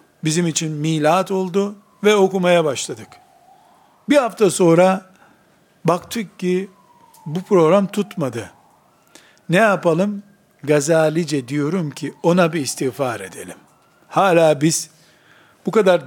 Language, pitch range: Turkish, 160-205 Hz